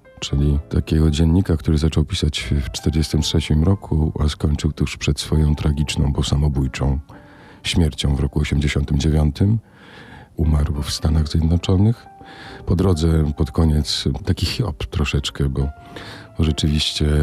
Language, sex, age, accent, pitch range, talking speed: Polish, male, 40-59, native, 75-95 Hz, 120 wpm